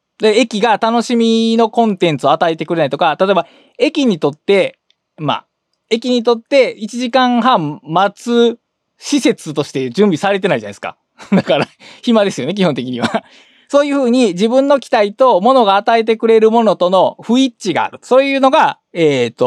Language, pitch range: Japanese, 160-250 Hz